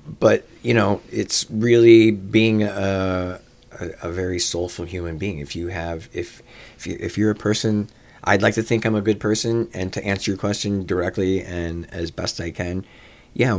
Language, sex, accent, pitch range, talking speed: English, male, American, 85-100 Hz, 185 wpm